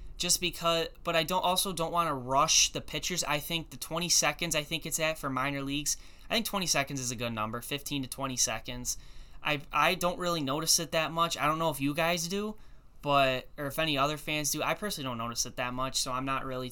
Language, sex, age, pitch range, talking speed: English, male, 10-29, 130-170 Hz, 250 wpm